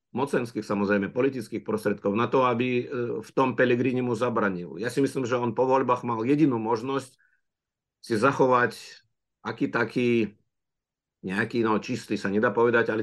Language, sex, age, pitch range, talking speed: Czech, male, 50-69, 100-120 Hz, 150 wpm